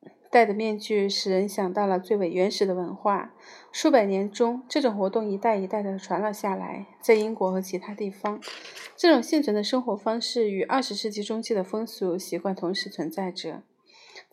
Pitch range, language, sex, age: 190-225 Hz, Chinese, female, 30-49